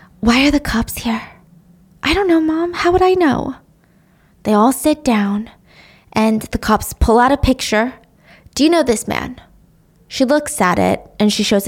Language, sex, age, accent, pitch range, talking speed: English, female, 20-39, American, 230-360 Hz, 185 wpm